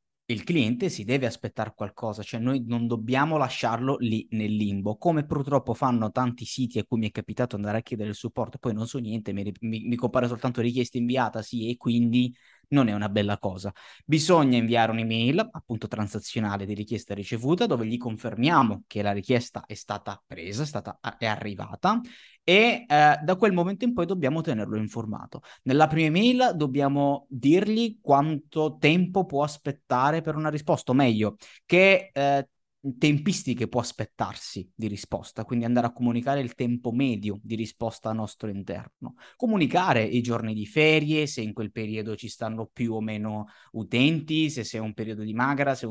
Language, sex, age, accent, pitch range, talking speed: Italian, male, 20-39, native, 110-140 Hz, 175 wpm